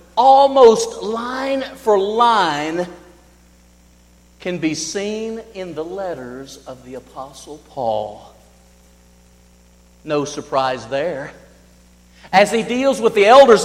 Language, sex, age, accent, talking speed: English, male, 50-69, American, 100 wpm